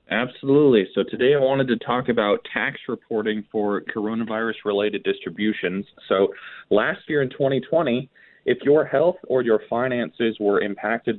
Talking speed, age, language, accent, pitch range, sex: 140 wpm, 20-39, English, American, 100-130 Hz, male